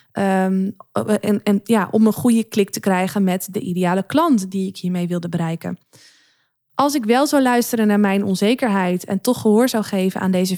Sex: female